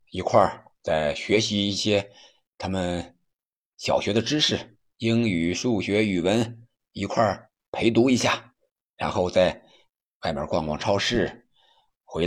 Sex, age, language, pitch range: male, 50-69, Chinese, 90-115 Hz